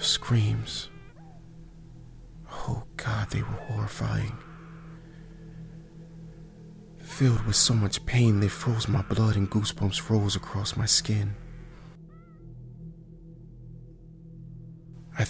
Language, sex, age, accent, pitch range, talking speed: English, male, 30-49, American, 100-160 Hz, 85 wpm